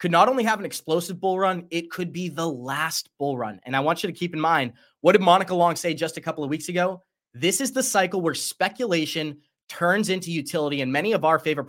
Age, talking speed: 20-39, 245 wpm